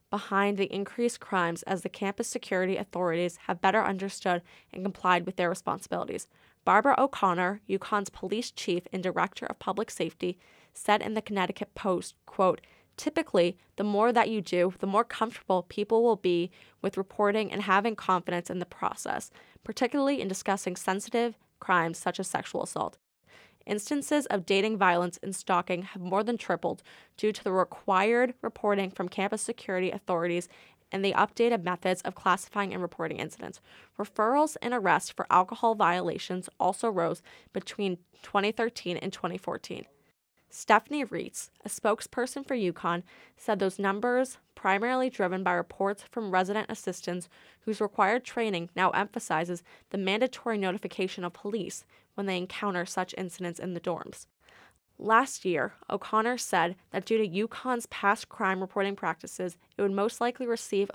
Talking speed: 150 wpm